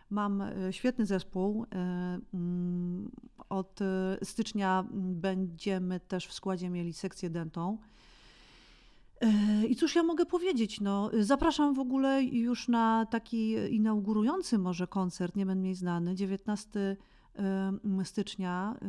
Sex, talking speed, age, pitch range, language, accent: female, 105 wpm, 40-59, 185-220 Hz, Polish, native